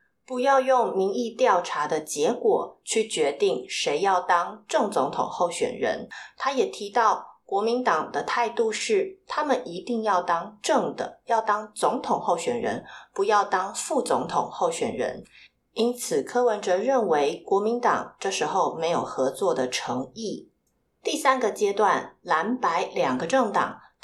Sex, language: female, Chinese